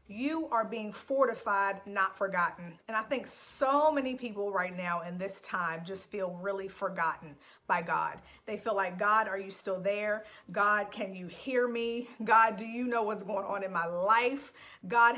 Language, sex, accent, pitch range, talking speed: English, female, American, 195-235 Hz, 185 wpm